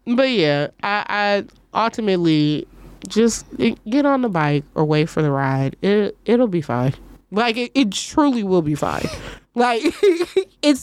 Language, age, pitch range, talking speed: English, 20-39, 165-240 Hz, 160 wpm